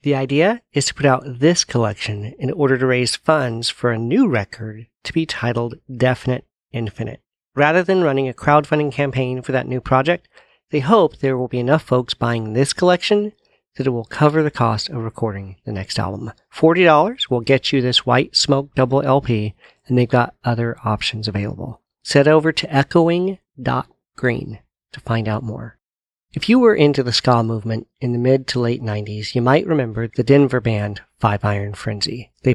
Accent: American